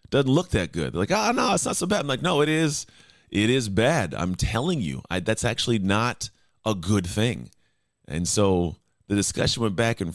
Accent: American